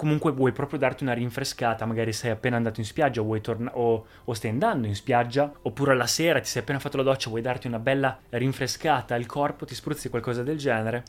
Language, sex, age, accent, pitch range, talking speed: Italian, male, 20-39, native, 115-140 Hz, 235 wpm